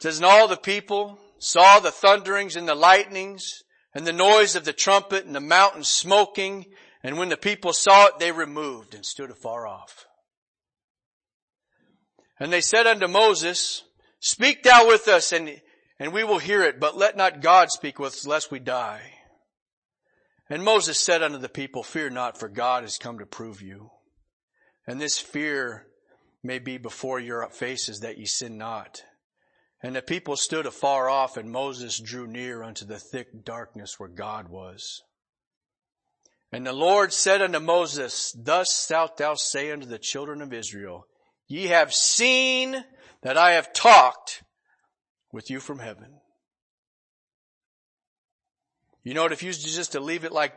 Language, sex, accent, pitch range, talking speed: English, male, American, 130-195 Hz, 165 wpm